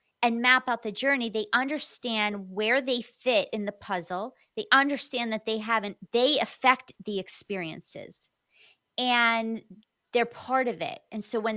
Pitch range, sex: 215-275 Hz, female